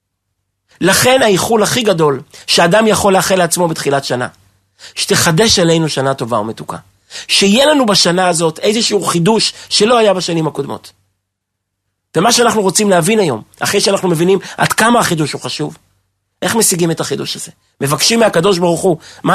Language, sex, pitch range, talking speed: Hebrew, male, 130-205 Hz, 150 wpm